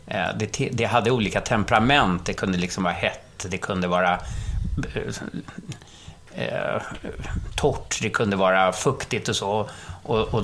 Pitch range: 95-125 Hz